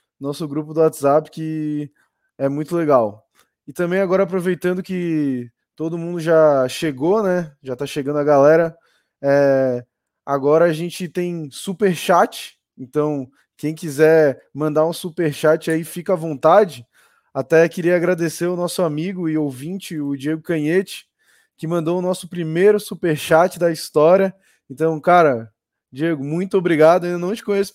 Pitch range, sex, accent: 155-180 Hz, male, Brazilian